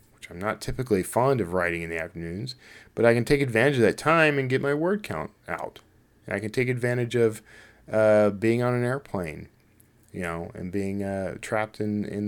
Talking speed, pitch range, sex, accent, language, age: 200 wpm, 100-130 Hz, male, American, English, 40-59